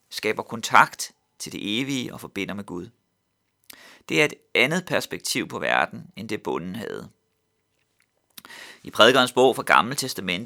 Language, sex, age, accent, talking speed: Danish, male, 30-49, native, 145 wpm